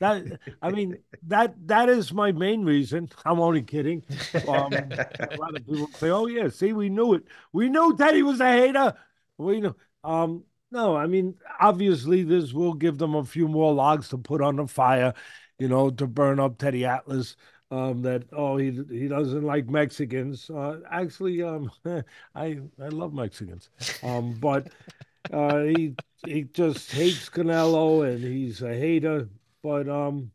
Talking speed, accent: 170 wpm, American